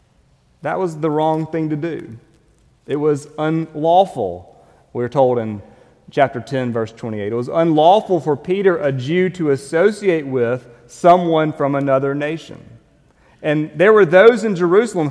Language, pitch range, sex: English, 130-165 Hz, male